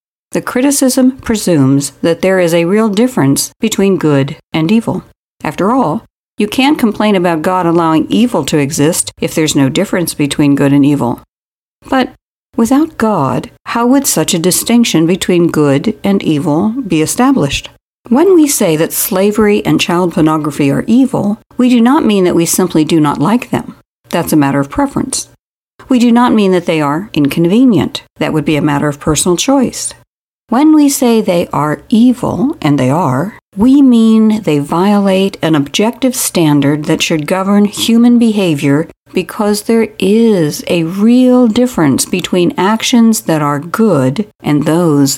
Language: English